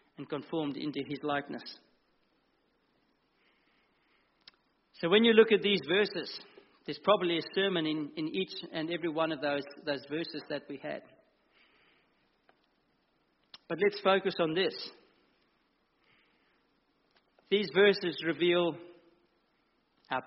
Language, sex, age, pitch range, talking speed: English, male, 50-69, 150-185 Hz, 115 wpm